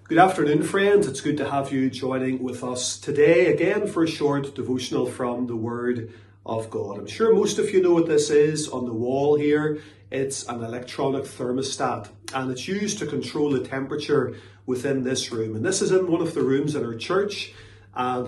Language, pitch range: English, 120-160 Hz